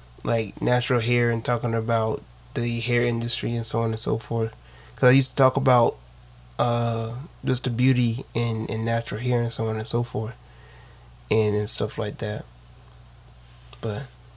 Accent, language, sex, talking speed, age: American, English, male, 170 wpm, 20-39